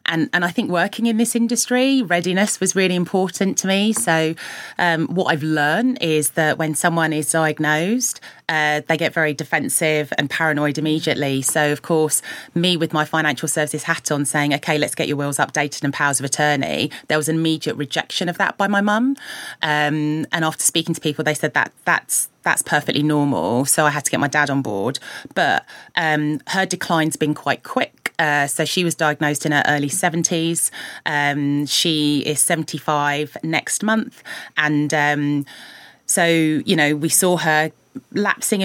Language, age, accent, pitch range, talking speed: English, 30-49, British, 150-175 Hz, 180 wpm